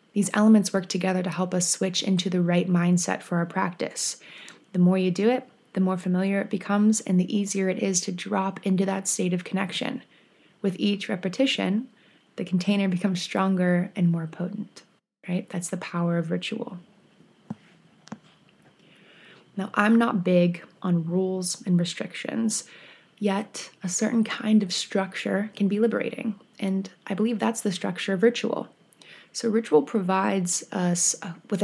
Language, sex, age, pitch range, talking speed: English, female, 20-39, 180-210 Hz, 155 wpm